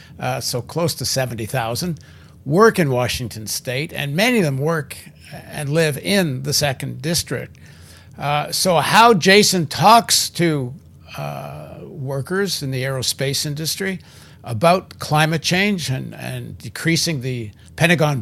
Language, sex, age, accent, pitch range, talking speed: English, male, 60-79, American, 125-155 Hz, 135 wpm